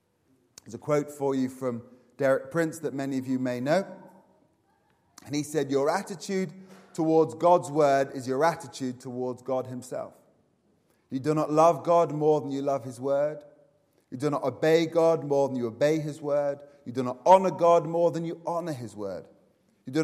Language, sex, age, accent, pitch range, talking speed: English, male, 30-49, British, 125-160 Hz, 190 wpm